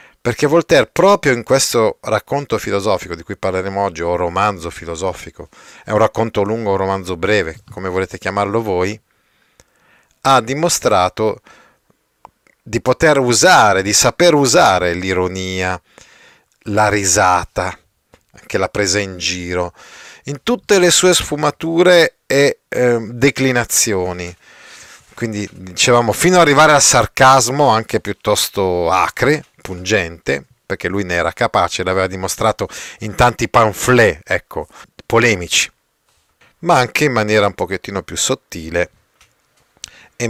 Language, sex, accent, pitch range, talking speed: Italian, male, native, 95-130 Hz, 120 wpm